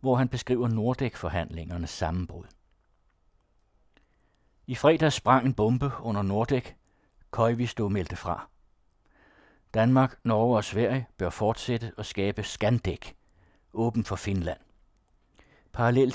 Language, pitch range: Danish, 100-130 Hz